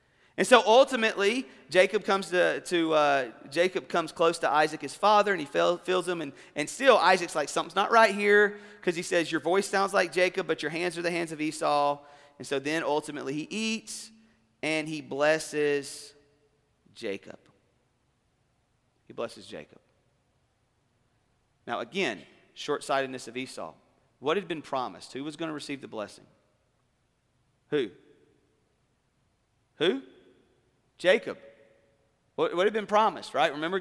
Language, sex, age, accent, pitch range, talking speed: English, male, 40-59, American, 145-195 Hz, 145 wpm